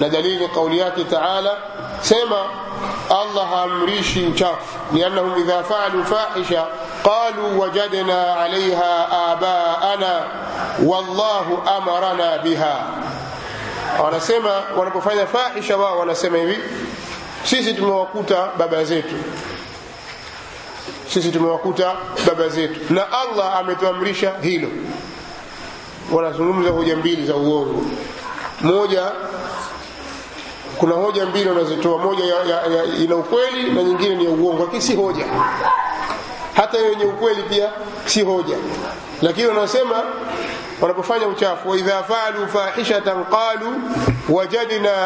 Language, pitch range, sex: Swahili, 170-205 Hz, male